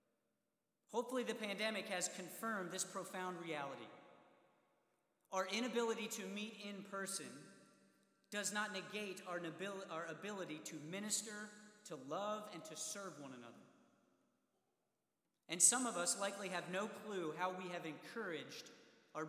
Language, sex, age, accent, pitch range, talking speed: English, male, 40-59, American, 165-200 Hz, 130 wpm